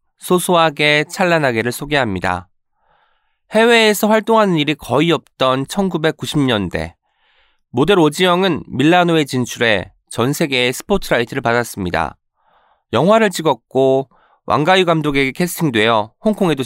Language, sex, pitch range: Korean, male, 115-180 Hz